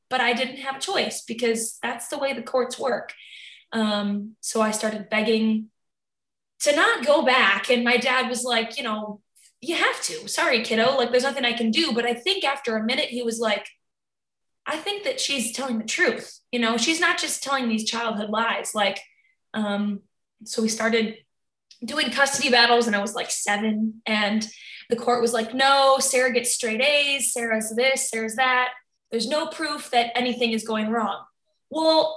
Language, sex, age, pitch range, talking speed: English, female, 20-39, 225-275 Hz, 190 wpm